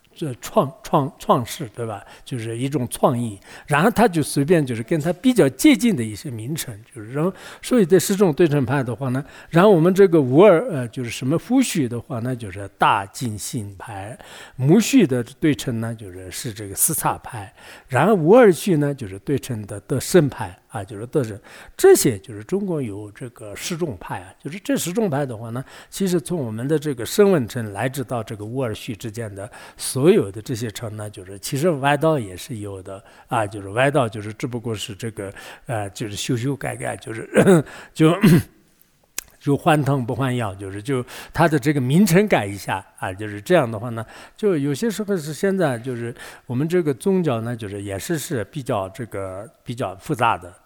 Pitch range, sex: 110-160 Hz, male